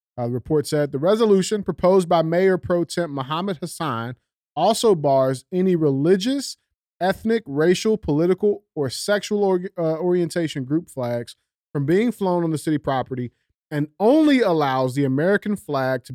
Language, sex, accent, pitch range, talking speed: English, male, American, 125-175 Hz, 150 wpm